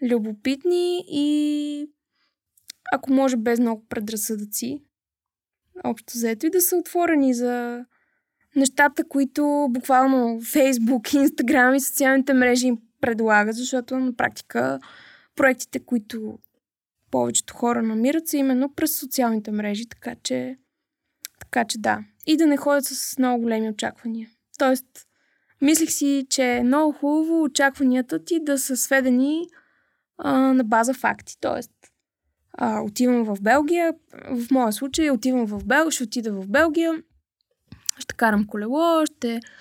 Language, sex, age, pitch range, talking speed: Bulgarian, female, 20-39, 240-305 Hz, 130 wpm